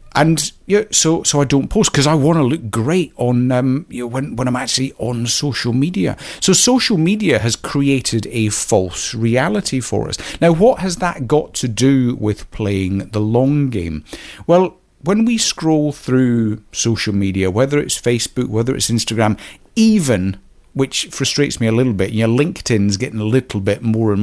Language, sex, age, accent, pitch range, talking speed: English, male, 50-69, British, 100-145 Hz, 185 wpm